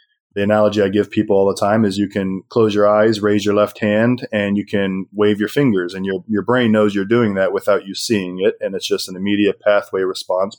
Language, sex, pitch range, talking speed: English, male, 100-115 Hz, 245 wpm